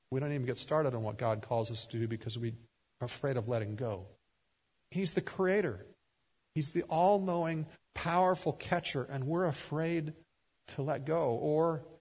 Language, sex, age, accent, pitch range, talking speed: English, male, 50-69, American, 120-155 Hz, 170 wpm